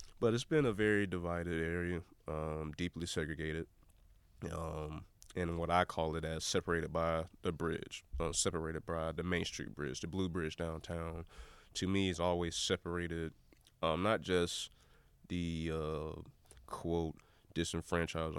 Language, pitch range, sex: English, 80-90 Hz, male